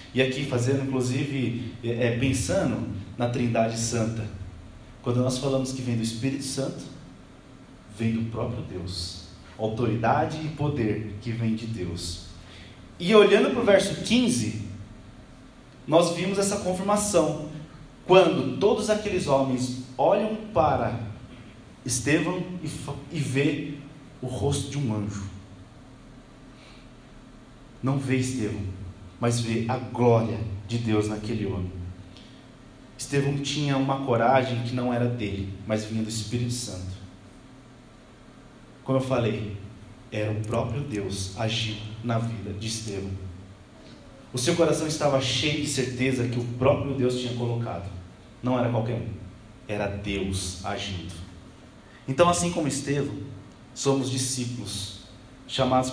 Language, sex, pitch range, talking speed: Portuguese, male, 105-135 Hz, 125 wpm